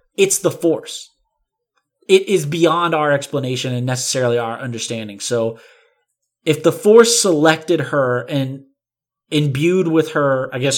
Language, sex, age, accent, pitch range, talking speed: English, male, 20-39, American, 140-225 Hz, 140 wpm